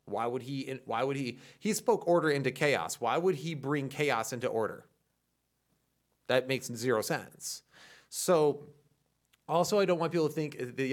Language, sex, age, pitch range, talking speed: English, male, 30-49, 115-150 Hz, 170 wpm